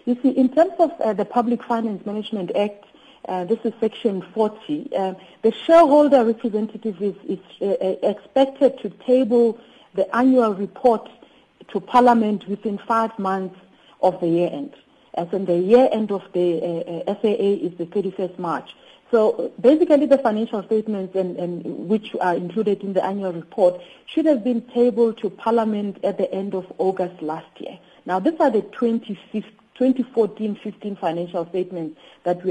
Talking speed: 160 wpm